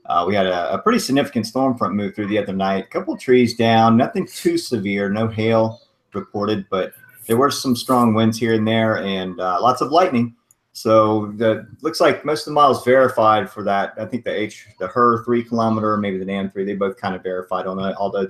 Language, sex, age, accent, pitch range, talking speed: English, male, 40-59, American, 95-120 Hz, 230 wpm